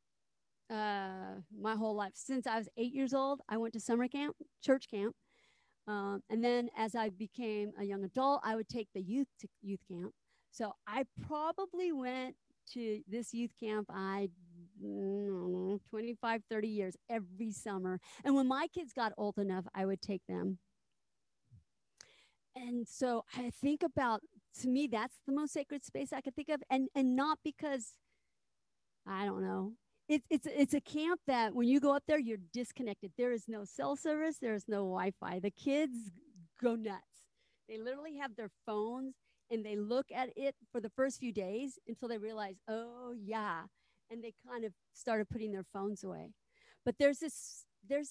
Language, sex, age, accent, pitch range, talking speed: English, female, 40-59, American, 205-270 Hz, 175 wpm